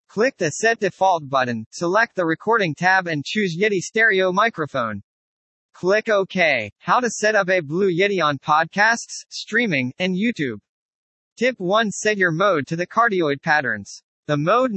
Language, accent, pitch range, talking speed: English, American, 155-215 Hz, 160 wpm